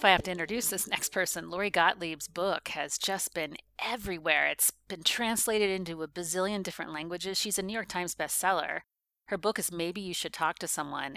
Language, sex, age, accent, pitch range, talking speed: English, female, 40-59, American, 160-195 Hz, 205 wpm